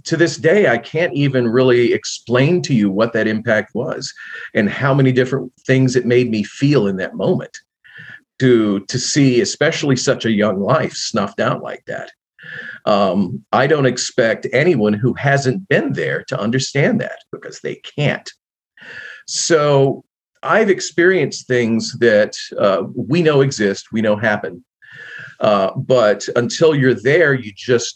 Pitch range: 110-140 Hz